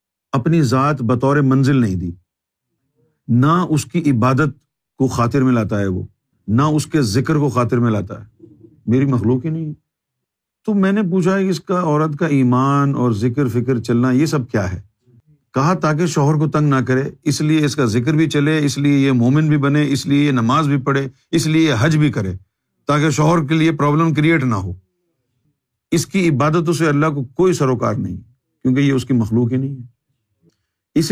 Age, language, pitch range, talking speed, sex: 50-69, Urdu, 120-155 Hz, 205 wpm, male